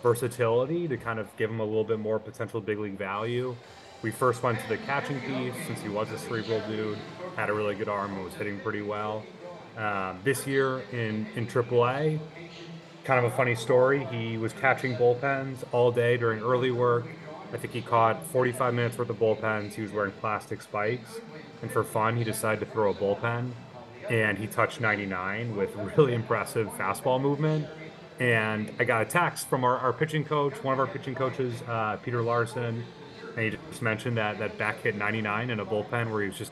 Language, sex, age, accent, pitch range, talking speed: English, male, 30-49, American, 110-130 Hz, 200 wpm